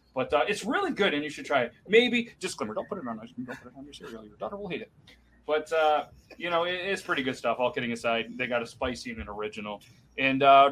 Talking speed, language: 260 wpm, English